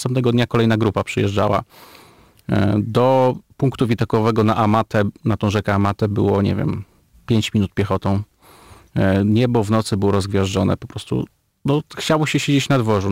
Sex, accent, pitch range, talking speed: male, native, 100-130 Hz, 150 wpm